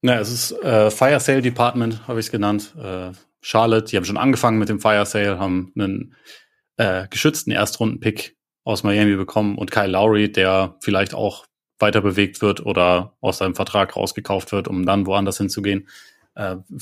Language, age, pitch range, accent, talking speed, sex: German, 30-49, 95-110 Hz, German, 170 wpm, male